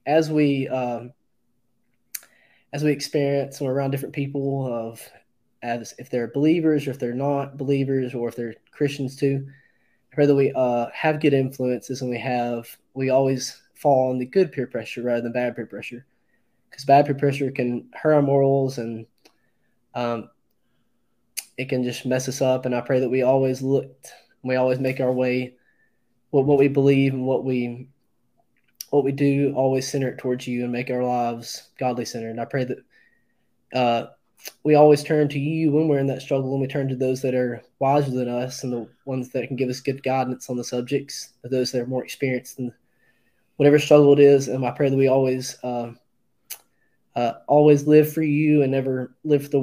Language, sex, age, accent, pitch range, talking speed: English, male, 20-39, American, 125-140 Hz, 200 wpm